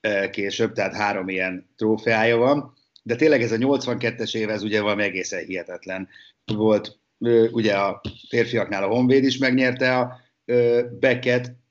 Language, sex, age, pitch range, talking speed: Hungarian, male, 50-69, 105-125 Hz, 140 wpm